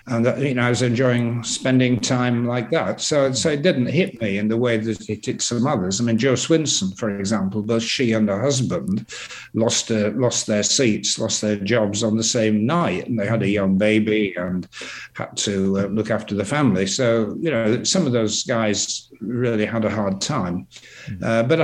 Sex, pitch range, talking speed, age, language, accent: male, 110-140 Hz, 210 wpm, 60-79, English, British